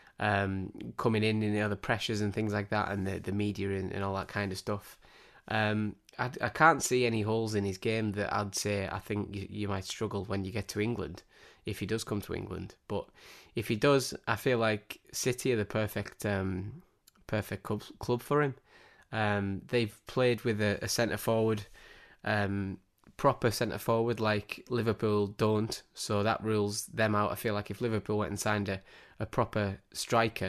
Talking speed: 200 wpm